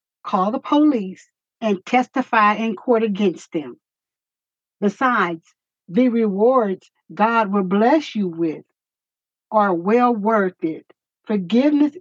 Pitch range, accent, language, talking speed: 195-255 Hz, American, English, 110 wpm